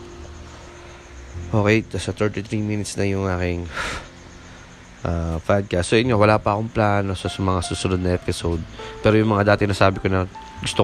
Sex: male